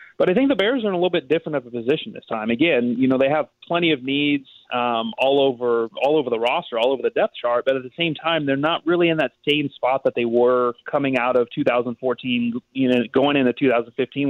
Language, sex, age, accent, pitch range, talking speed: English, male, 30-49, American, 120-155 Hz, 250 wpm